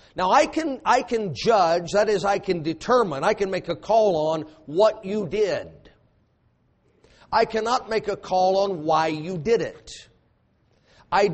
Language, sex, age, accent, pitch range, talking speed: English, male, 50-69, American, 170-220 Hz, 160 wpm